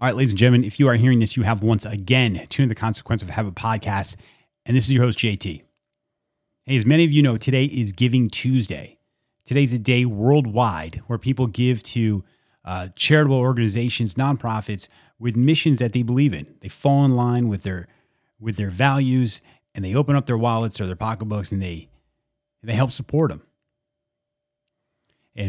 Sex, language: male, English